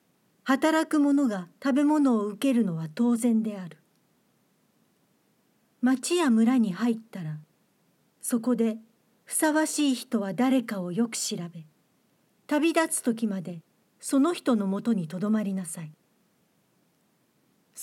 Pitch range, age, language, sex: 195-260 Hz, 50-69, Japanese, female